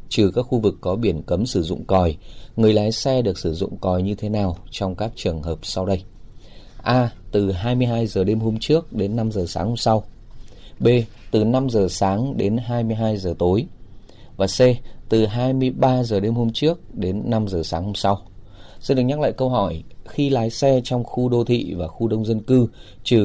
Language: Vietnamese